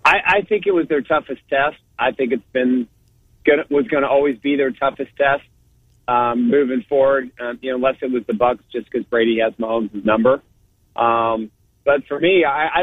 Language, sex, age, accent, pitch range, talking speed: English, male, 40-59, American, 120-140 Hz, 205 wpm